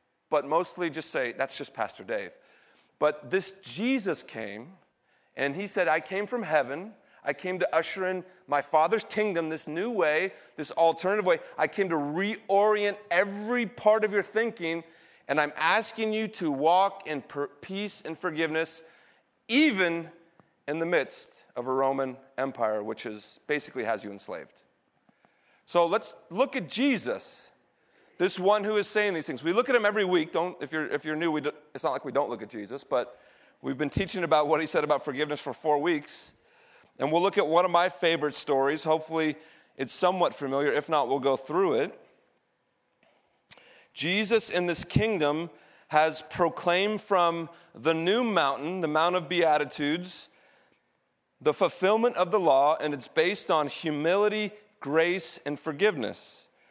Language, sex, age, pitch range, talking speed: English, male, 40-59, 150-200 Hz, 165 wpm